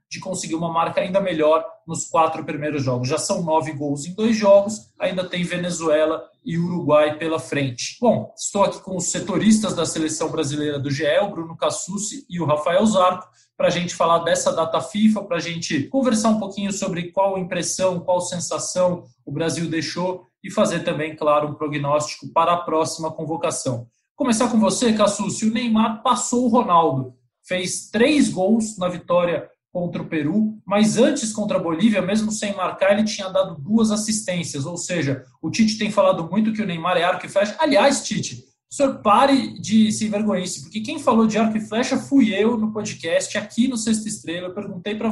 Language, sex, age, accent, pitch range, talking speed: Portuguese, male, 20-39, Brazilian, 165-215 Hz, 190 wpm